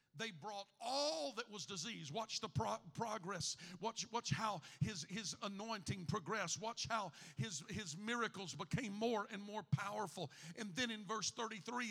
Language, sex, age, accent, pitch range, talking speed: English, male, 50-69, American, 150-195 Hz, 160 wpm